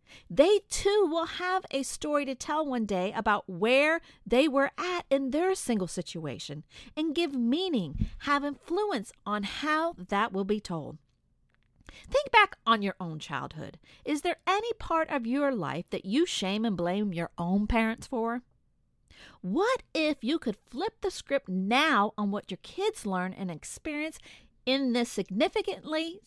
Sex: female